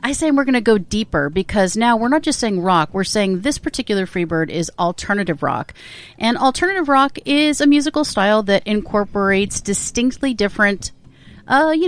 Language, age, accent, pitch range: English, 30-49, American, 185-255 Hz